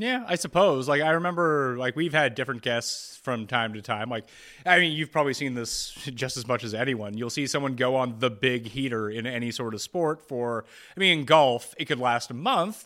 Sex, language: male, English